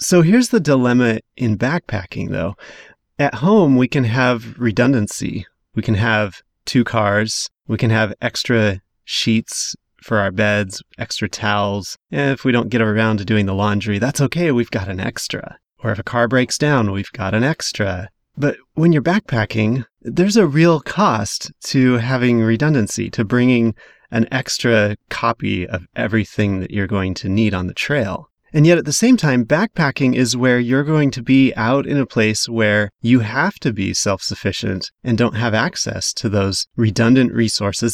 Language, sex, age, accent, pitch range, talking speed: English, male, 30-49, American, 105-140 Hz, 175 wpm